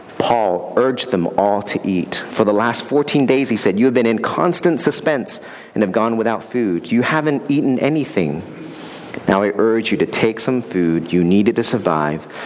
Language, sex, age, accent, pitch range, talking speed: English, male, 40-59, American, 90-115 Hz, 195 wpm